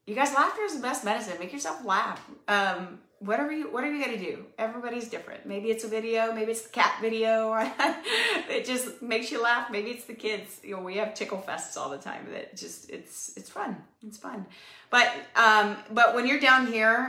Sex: female